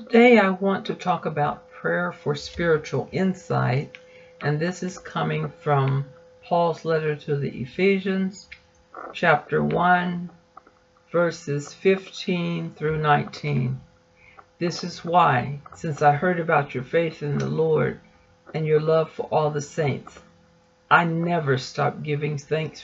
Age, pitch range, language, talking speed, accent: 60-79, 145-175 Hz, English, 130 wpm, American